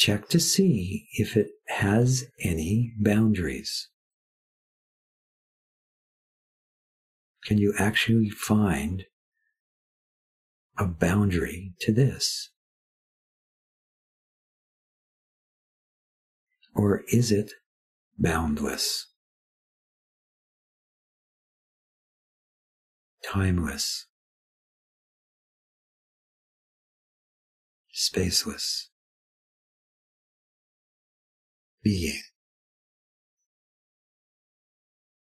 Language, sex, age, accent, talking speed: English, male, 50-69, American, 40 wpm